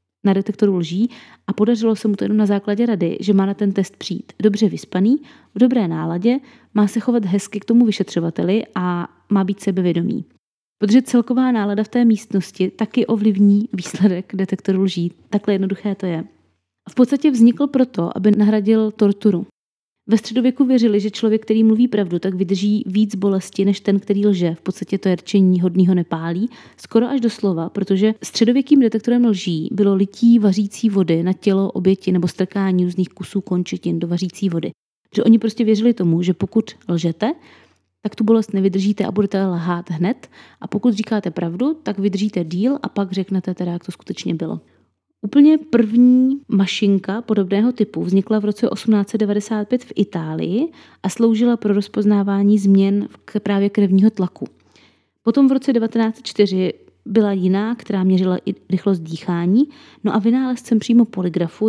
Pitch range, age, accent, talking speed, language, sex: 190-225 Hz, 30-49, native, 160 wpm, Czech, female